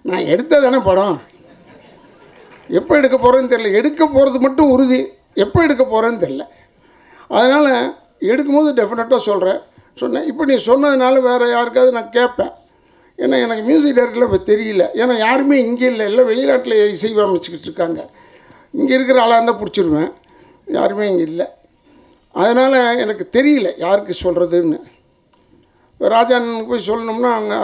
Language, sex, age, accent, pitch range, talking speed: Tamil, male, 60-79, native, 195-260 Hz, 130 wpm